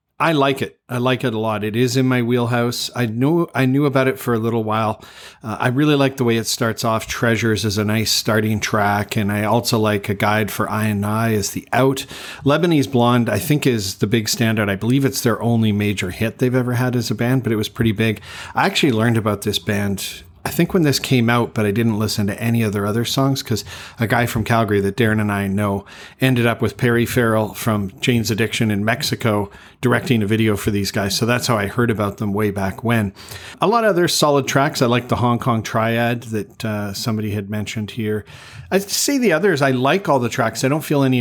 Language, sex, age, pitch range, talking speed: English, male, 40-59, 110-130 Hz, 240 wpm